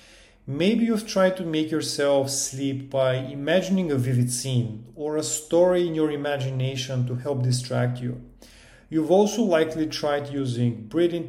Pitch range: 130-165 Hz